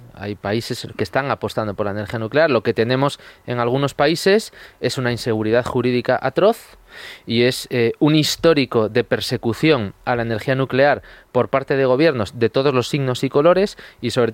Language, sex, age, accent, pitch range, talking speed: Spanish, male, 20-39, Spanish, 115-140 Hz, 180 wpm